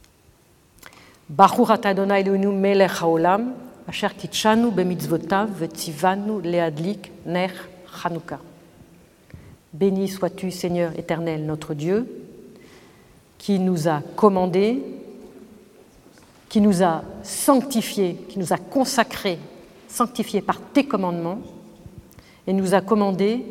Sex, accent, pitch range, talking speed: female, French, 175-210 Hz, 65 wpm